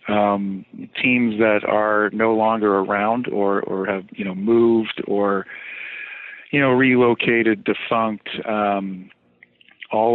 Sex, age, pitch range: male, 50-69, 100-115 Hz